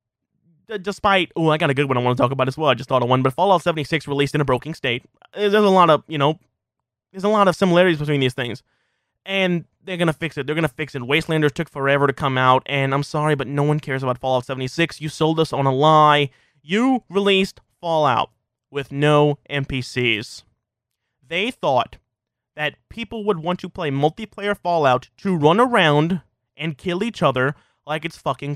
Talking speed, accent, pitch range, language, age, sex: 210 wpm, American, 135-205 Hz, English, 20-39, male